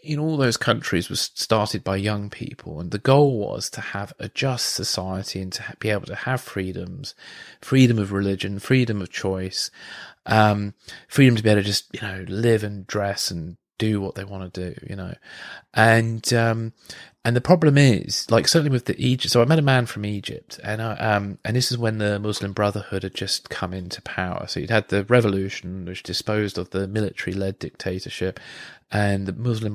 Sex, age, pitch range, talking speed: male, 30-49, 95-110 Hz, 200 wpm